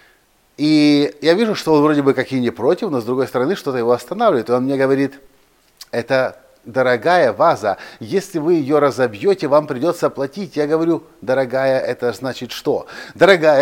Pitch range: 120-150 Hz